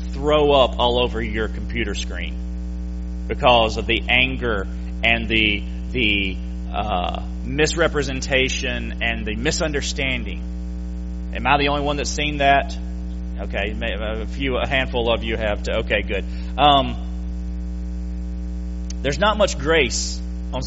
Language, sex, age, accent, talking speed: English, male, 30-49, American, 130 wpm